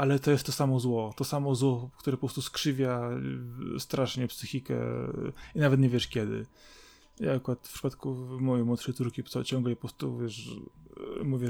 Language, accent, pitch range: Polish, native, 120-135 Hz